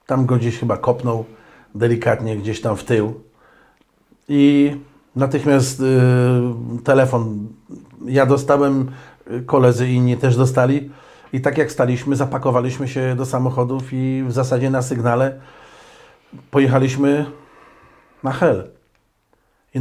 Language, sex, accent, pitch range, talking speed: Polish, male, native, 125-135 Hz, 110 wpm